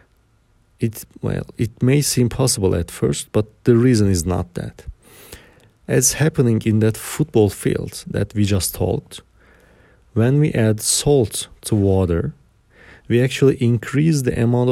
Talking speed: 145 wpm